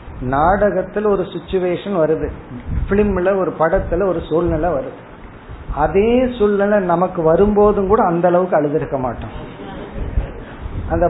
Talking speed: 110 wpm